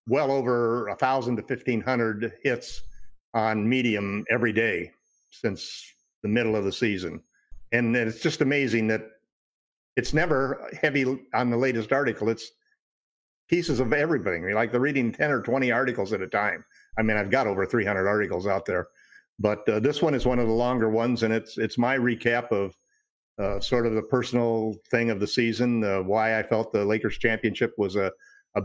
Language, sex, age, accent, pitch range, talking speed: English, male, 50-69, American, 110-125 Hz, 180 wpm